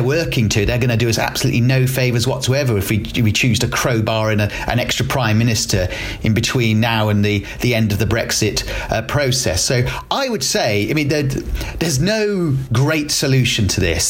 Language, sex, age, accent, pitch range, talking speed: English, male, 40-59, British, 110-135 Hz, 210 wpm